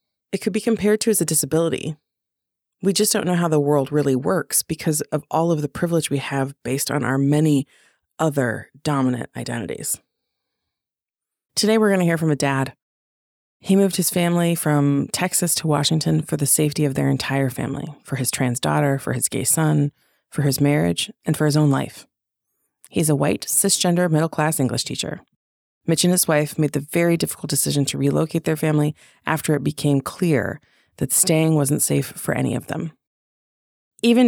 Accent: American